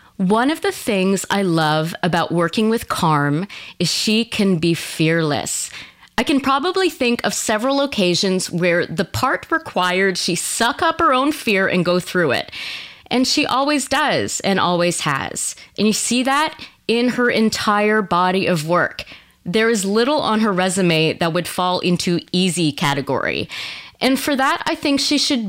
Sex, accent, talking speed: female, American, 170 wpm